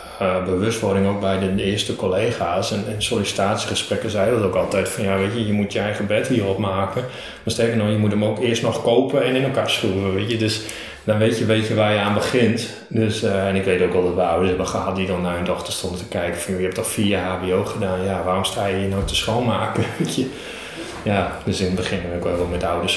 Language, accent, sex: Dutch, Dutch, male